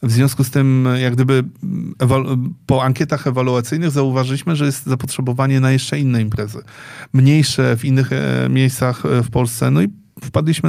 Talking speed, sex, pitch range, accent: 145 wpm, male, 120-135 Hz, native